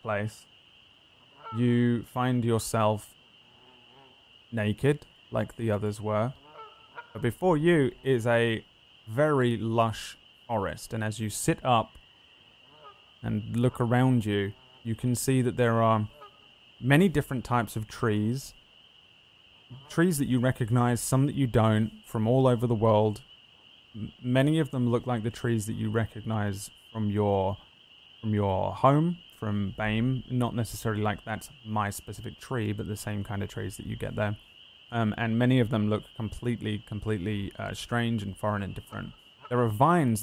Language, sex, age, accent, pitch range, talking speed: English, male, 30-49, British, 105-125 Hz, 150 wpm